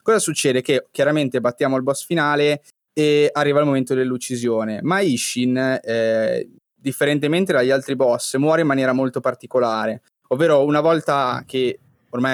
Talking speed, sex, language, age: 145 wpm, male, Italian, 20-39